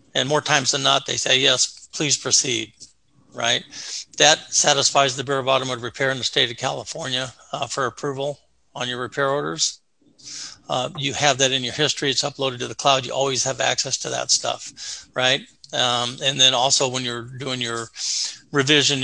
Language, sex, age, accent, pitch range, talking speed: English, male, 50-69, American, 125-140 Hz, 185 wpm